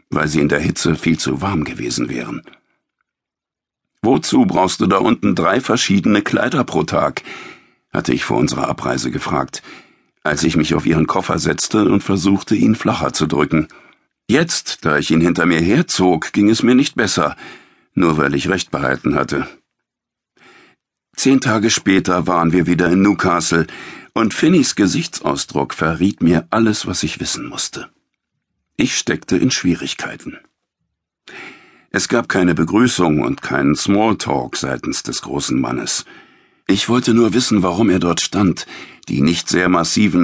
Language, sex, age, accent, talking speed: German, male, 60-79, German, 150 wpm